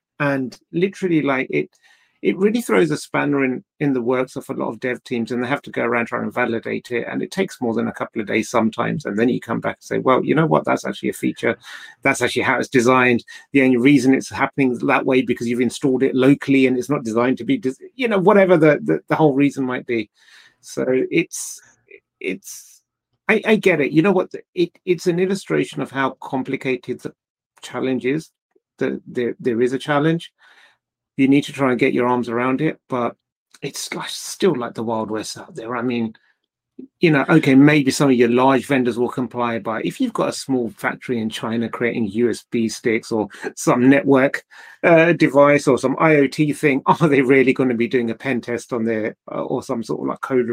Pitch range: 125-155 Hz